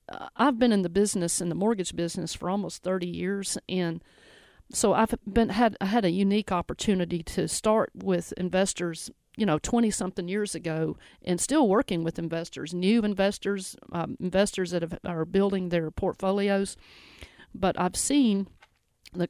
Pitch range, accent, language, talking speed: 175-210 Hz, American, English, 155 wpm